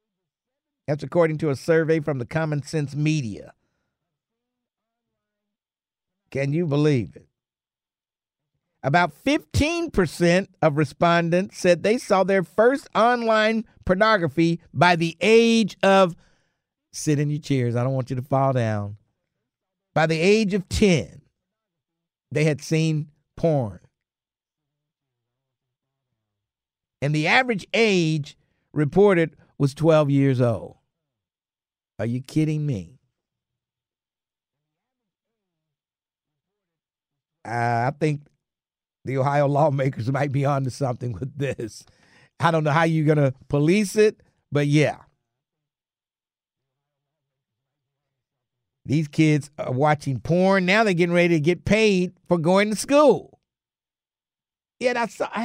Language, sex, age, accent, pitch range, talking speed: English, male, 50-69, American, 135-185 Hz, 115 wpm